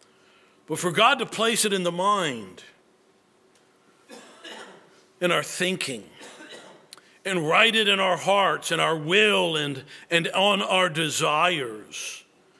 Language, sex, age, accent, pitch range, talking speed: English, male, 60-79, American, 165-205 Hz, 125 wpm